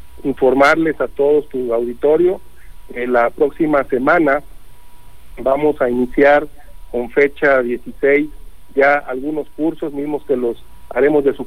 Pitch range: 125-150 Hz